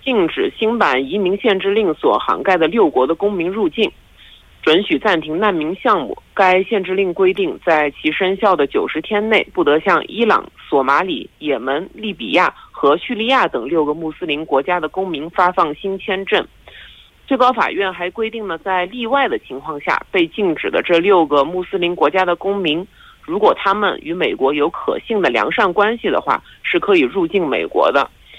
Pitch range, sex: 165-220 Hz, male